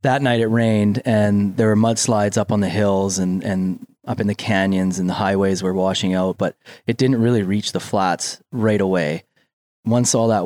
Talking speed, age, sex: 205 wpm, 20-39, male